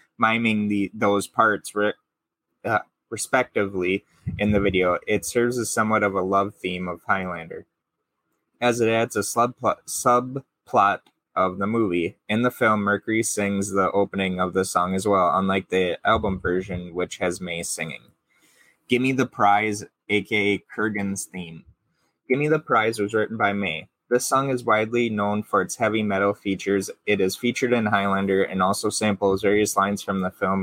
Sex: male